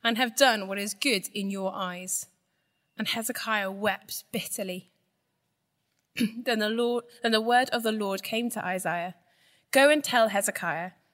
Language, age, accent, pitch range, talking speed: English, 10-29, British, 180-230 Hz, 155 wpm